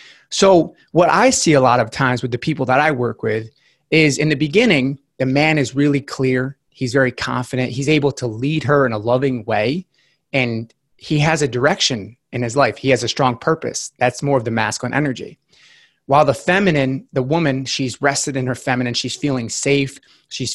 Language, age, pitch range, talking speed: English, 30-49, 125-155 Hz, 200 wpm